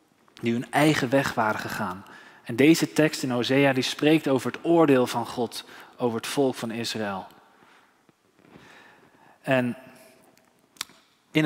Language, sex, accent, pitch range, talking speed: Dutch, male, Dutch, 125-155 Hz, 130 wpm